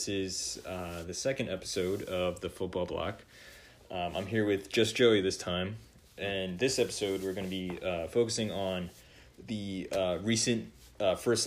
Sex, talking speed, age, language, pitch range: male, 165 wpm, 20-39, English, 95-110 Hz